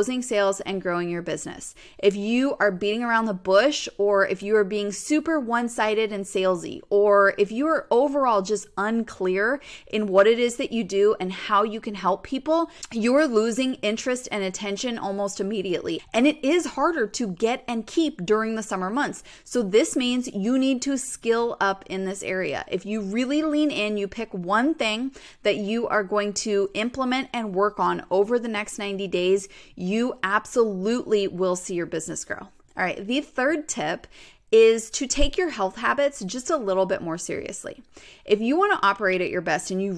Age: 20-39